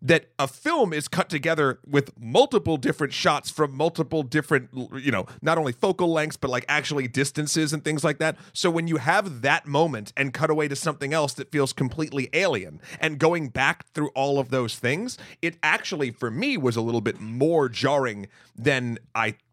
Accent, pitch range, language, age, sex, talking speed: American, 120-160 Hz, English, 40-59, male, 195 wpm